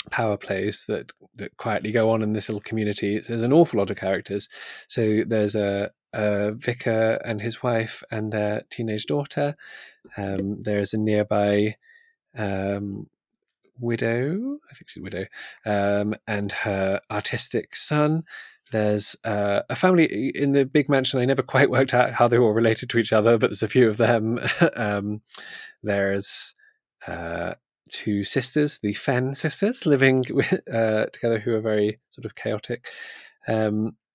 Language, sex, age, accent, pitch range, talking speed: English, male, 20-39, British, 105-130 Hz, 155 wpm